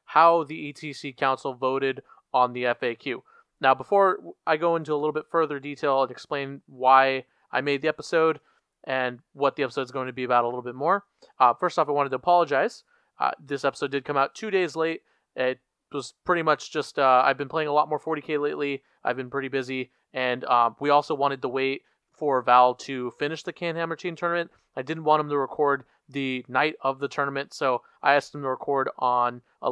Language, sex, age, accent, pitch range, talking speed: English, male, 20-39, American, 130-155 Hz, 215 wpm